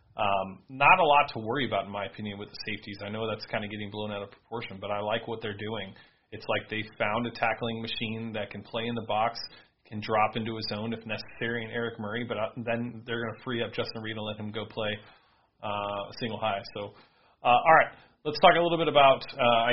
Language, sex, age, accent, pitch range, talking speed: English, male, 30-49, American, 105-120 Hz, 250 wpm